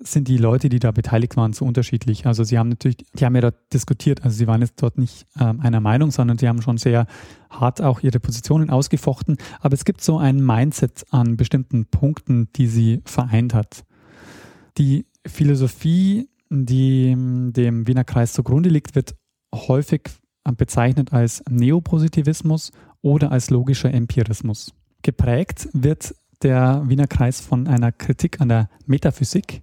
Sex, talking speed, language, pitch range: male, 160 wpm, German, 120-145 Hz